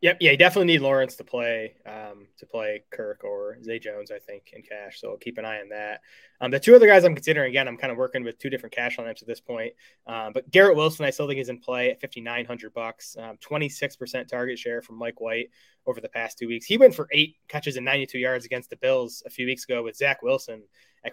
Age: 20-39